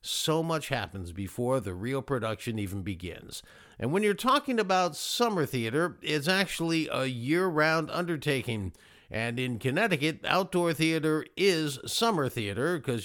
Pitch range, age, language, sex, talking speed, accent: 130-175 Hz, 50-69, English, male, 140 wpm, American